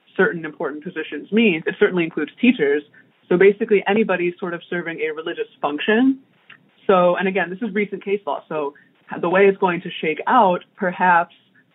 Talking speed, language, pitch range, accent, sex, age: 175 wpm, English, 155-210 Hz, American, female, 20-39